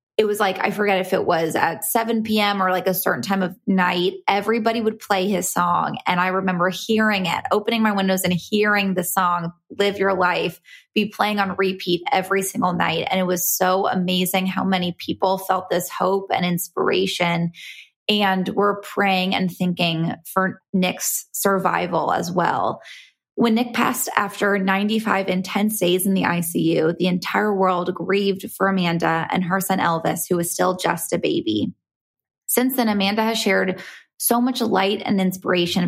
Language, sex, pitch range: English, female, 180-205 Hz